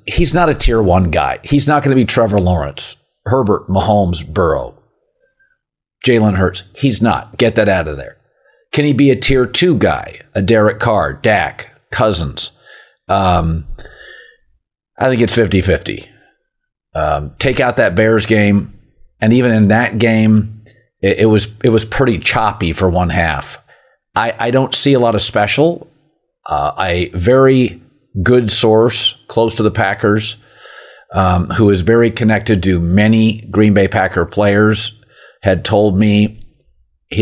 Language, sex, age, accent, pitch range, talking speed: English, male, 40-59, American, 95-125 Hz, 150 wpm